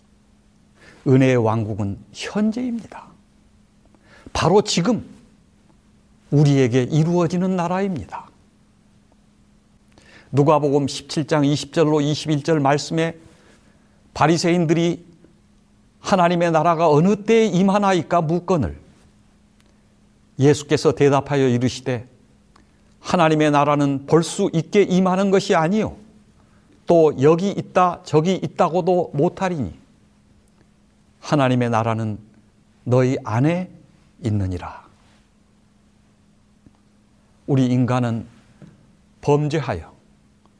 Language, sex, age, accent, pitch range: Korean, male, 60-79, native, 135-180 Hz